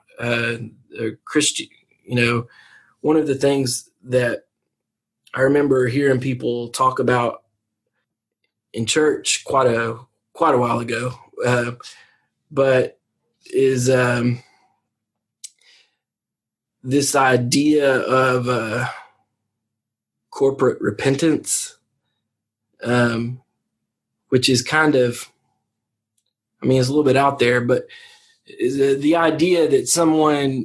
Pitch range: 120-140 Hz